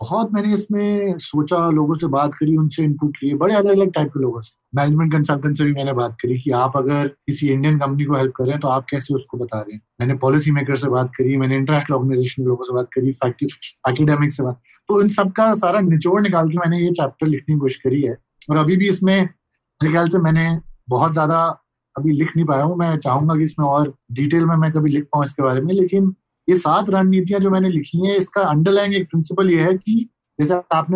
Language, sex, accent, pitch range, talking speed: Hindi, male, native, 135-175 Hz, 220 wpm